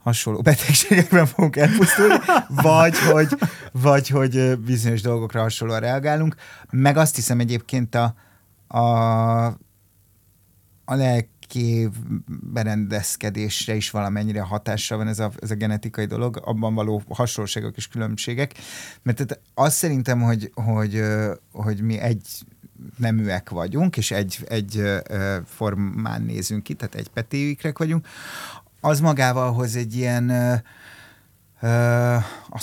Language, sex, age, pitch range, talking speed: Hungarian, male, 30-49, 105-125 Hz, 115 wpm